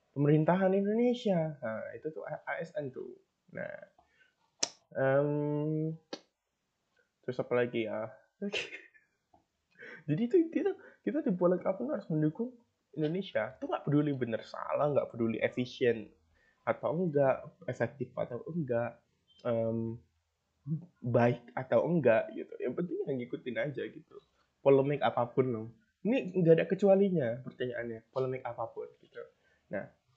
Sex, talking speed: male, 115 wpm